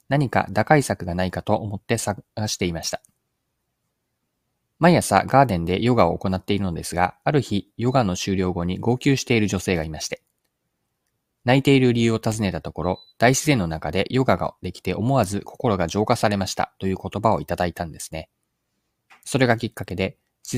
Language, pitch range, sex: Japanese, 90-125 Hz, male